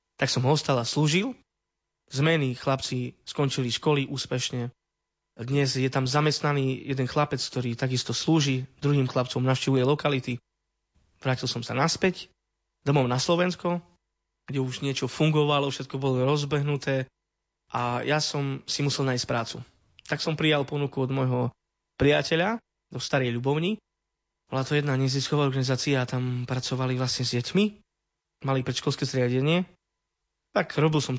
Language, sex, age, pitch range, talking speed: Slovak, male, 20-39, 125-145 Hz, 135 wpm